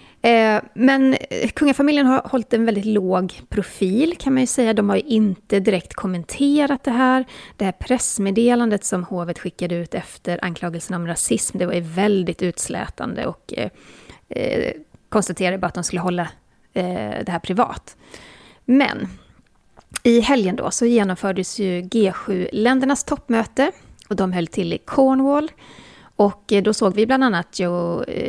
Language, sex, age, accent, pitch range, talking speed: Swedish, female, 30-49, native, 185-250 Hz, 150 wpm